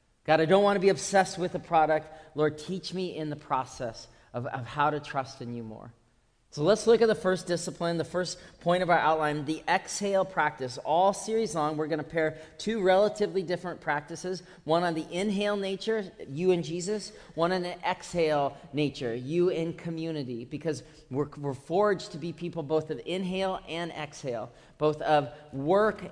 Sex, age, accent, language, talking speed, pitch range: male, 40-59, American, English, 190 wpm, 150-190 Hz